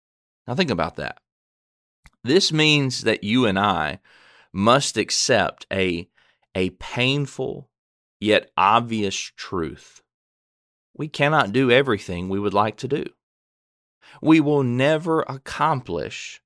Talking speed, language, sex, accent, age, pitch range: 115 wpm, English, male, American, 30-49, 90-125 Hz